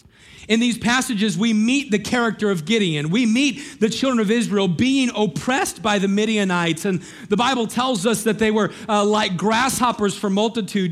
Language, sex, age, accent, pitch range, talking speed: English, male, 40-59, American, 205-240 Hz, 180 wpm